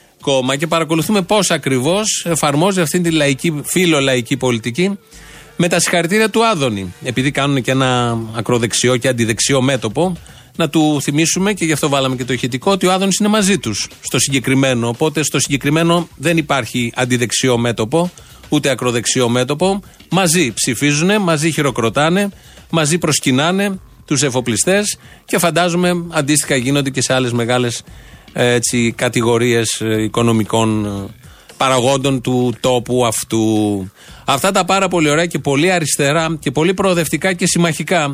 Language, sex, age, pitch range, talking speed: Greek, male, 30-49, 125-165 Hz, 135 wpm